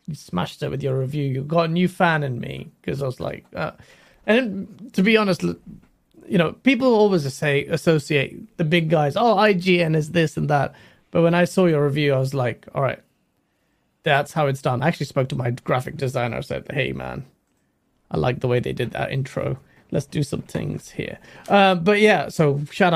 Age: 30-49